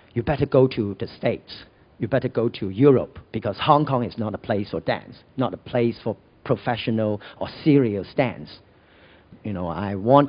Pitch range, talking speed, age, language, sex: 105-130 Hz, 185 wpm, 50-69, English, male